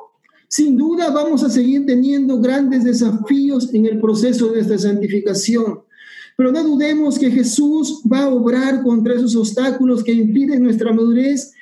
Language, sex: Spanish, male